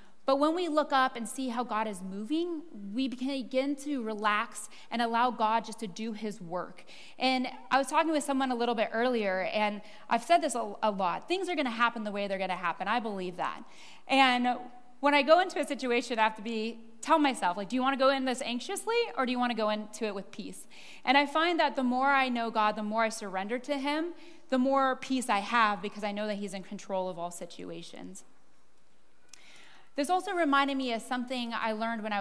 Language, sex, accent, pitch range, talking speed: English, female, American, 210-270 Hz, 225 wpm